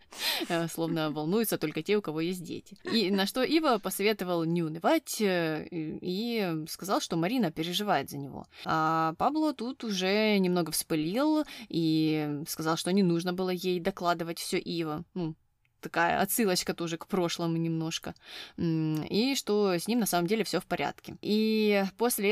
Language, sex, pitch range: Russian, female, 160-205 Hz